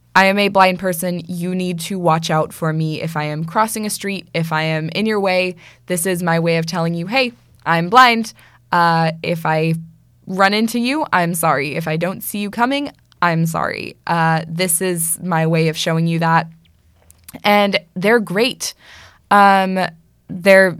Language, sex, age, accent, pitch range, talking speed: English, female, 20-39, American, 165-205 Hz, 185 wpm